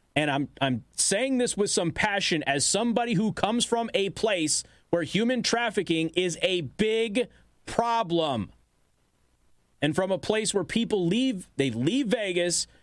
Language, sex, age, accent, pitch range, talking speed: English, male, 30-49, American, 135-210 Hz, 150 wpm